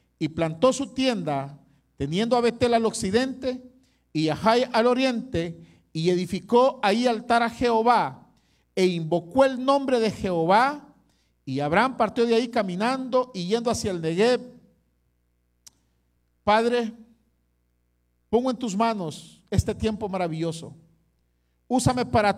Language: Spanish